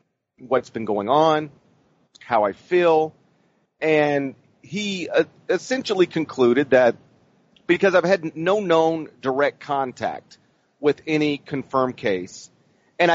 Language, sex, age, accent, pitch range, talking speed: English, male, 40-59, American, 120-150 Hz, 110 wpm